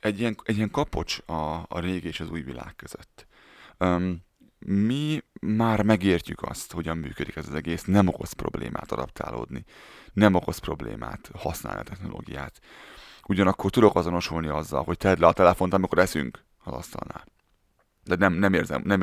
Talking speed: 160 wpm